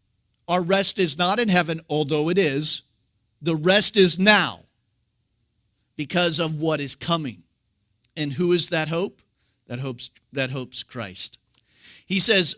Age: 50-69